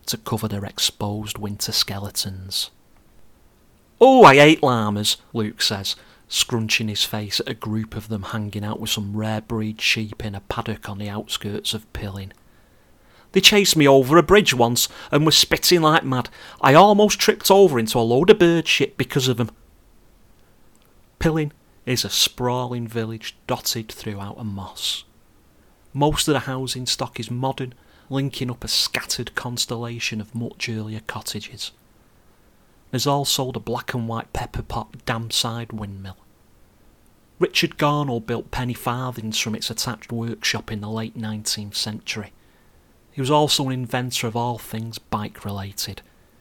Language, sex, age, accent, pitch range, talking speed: English, male, 40-59, British, 105-125 Hz, 155 wpm